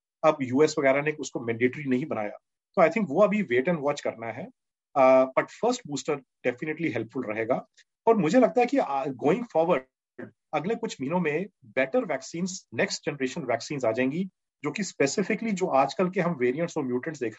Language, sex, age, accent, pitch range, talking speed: Hindi, male, 40-59, native, 130-180 Hz, 140 wpm